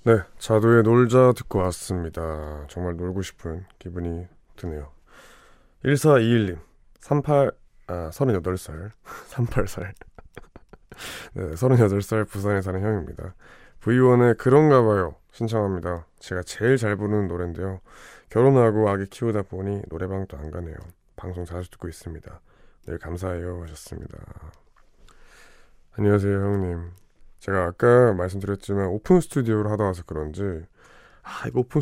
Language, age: Korean, 20-39